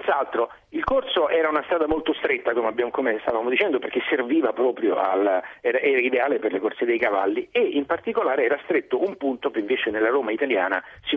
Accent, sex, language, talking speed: native, male, Italian, 205 wpm